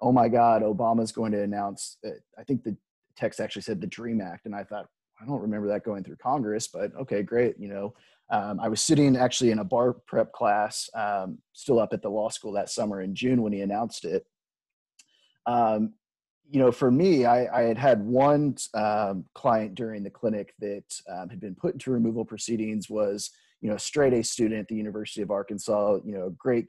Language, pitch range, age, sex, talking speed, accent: English, 105-125 Hz, 30-49, male, 215 wpm, American